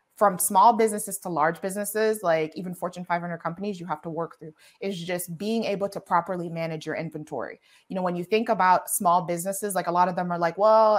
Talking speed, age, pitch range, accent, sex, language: 225 wpm, 20-39, 170-195 Hz, American, female, English